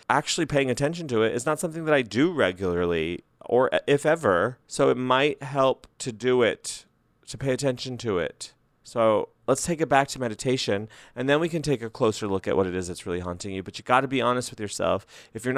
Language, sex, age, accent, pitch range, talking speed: English, male, 30-49, American, 105-130 Hz, 230 wpm